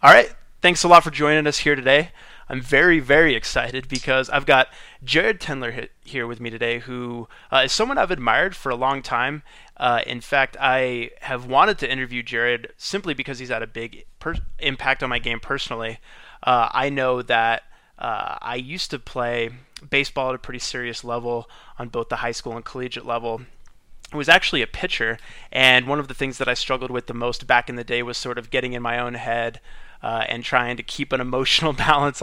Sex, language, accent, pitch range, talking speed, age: male, English, American, 120-135 Hz, 210 wpm, 20-39